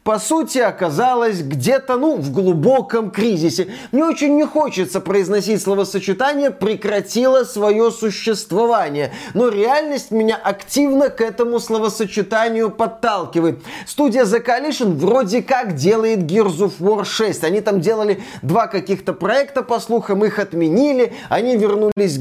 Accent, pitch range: native, 185-235 Hz